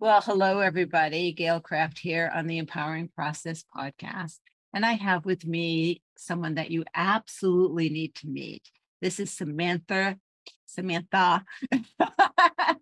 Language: English